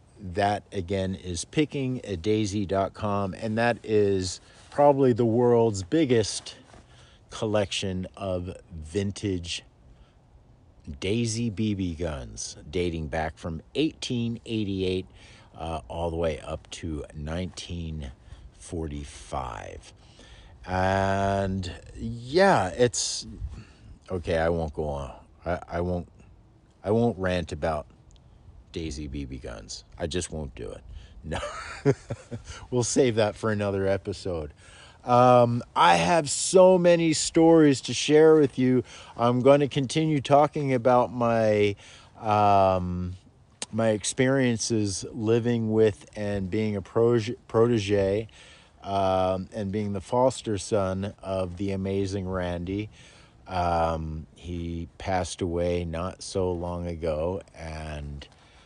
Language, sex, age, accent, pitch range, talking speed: English, male, 50-69, American, 90-115 Hz, 110 wpm